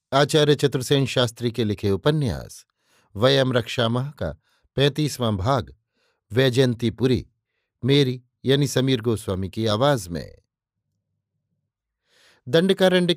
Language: Hindi